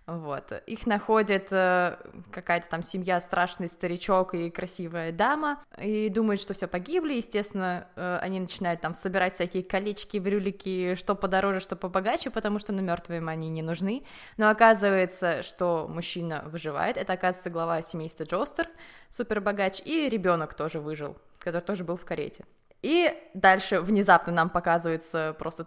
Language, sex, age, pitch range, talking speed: Russian, female, 20-39, 175-220 Hz, 150 wpm